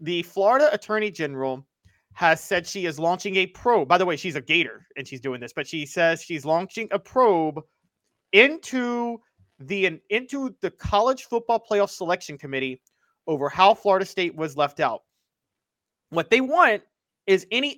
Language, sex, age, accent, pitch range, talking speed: English, male, 30-49, American, 145-195 Hz, 165 wpm